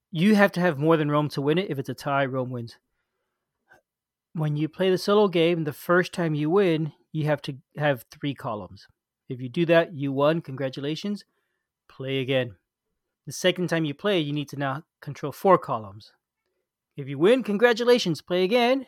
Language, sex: English, male